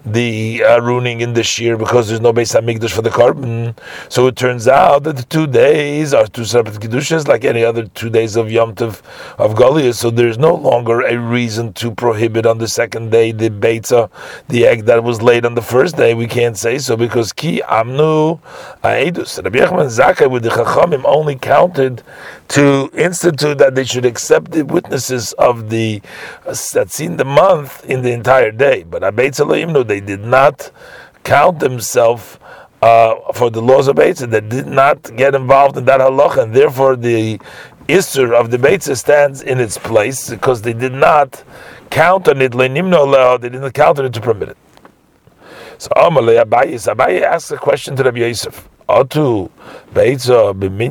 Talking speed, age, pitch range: 170 wpm, 40-59, 115-135 Hz